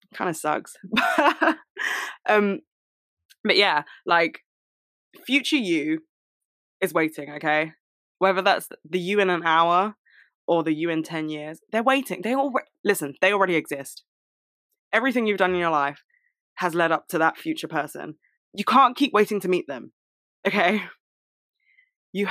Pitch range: 160-215 Hz